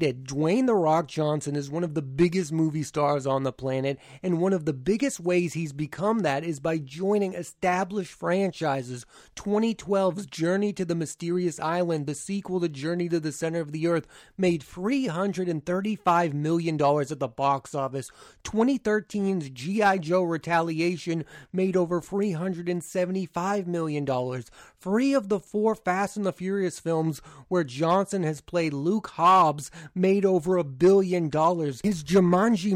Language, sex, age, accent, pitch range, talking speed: English, male, 30-49, American, 160-195 Hz, 150 wpm